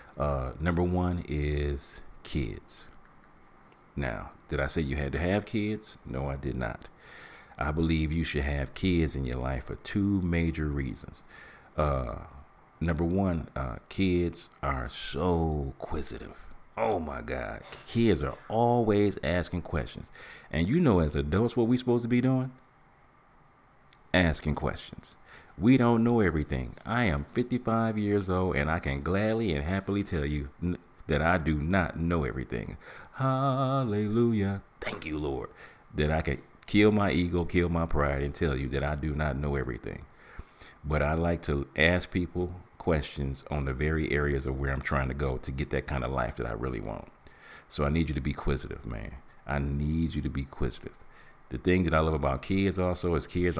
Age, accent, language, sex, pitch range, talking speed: 40-59, American, English, male, 70-95 Hz, 175 wpm